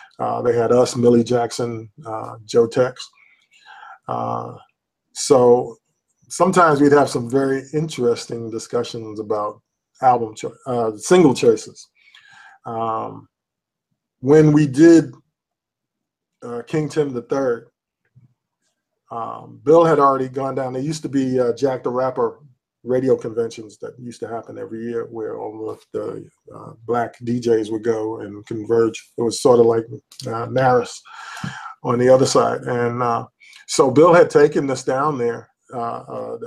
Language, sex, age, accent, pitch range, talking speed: English, male, 20-39, American, 115-150 Hz, 140 wpm